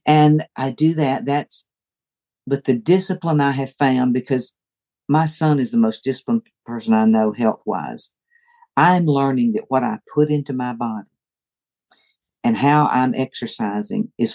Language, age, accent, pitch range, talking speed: English, 50-69, American, 125-160 Hz, 150 wpm